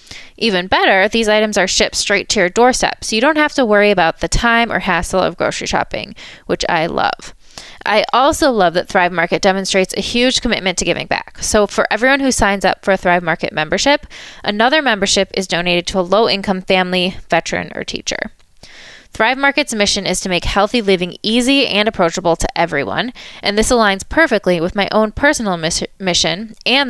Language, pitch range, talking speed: English, 180-225 Hz, 190 wpm